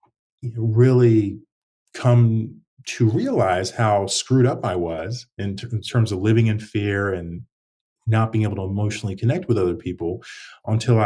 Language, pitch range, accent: English, 100-120 Hz, American